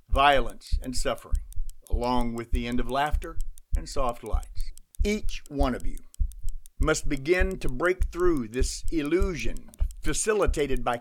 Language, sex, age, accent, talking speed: English, male, 50-69, American, 135 wpm